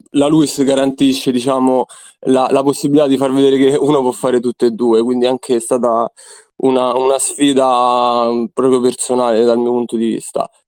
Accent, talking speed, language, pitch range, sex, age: native, 175 wpm, Italian, 125-140 Hz, male, 20-39